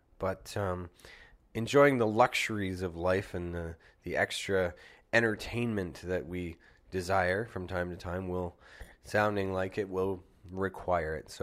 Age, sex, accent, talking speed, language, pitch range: 30-49, male, American, 140 wpm, English, 90-100 Hz